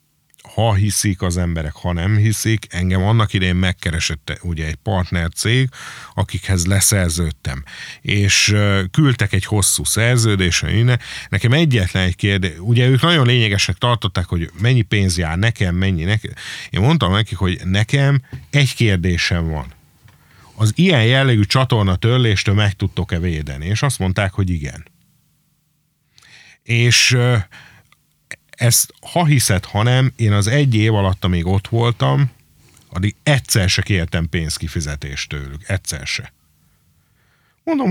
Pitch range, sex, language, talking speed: 90-120 Hz, male, Hungarian, 130 wpm